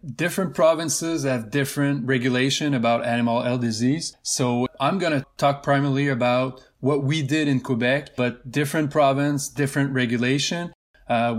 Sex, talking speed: male, 140 wpm